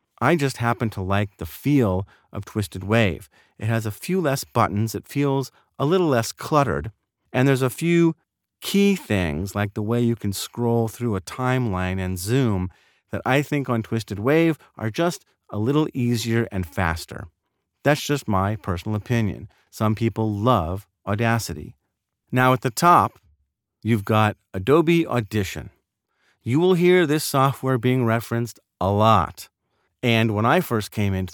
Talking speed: 160 wpm